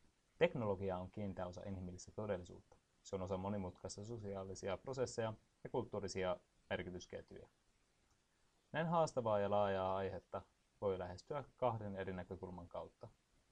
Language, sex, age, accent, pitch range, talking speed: Finnish, male, 30-49, native, 90-115 Hz, 115 wpm